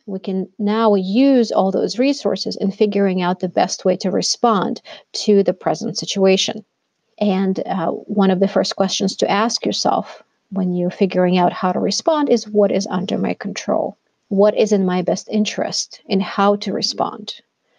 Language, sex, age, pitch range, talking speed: English, female, 40-59, 190-215 Hz, 175 wpm